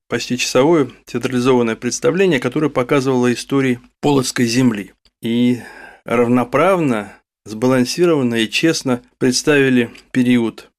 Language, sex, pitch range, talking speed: Russian, male, 115-135 Hz, 90 wpm